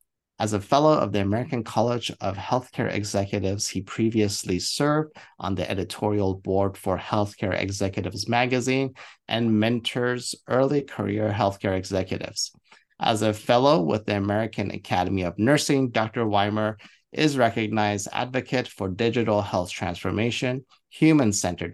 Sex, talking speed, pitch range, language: male, 125 wpm, 100-125 Hz, English